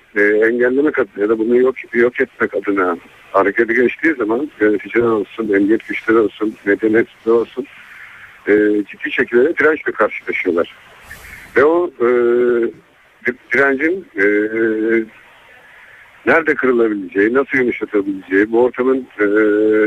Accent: native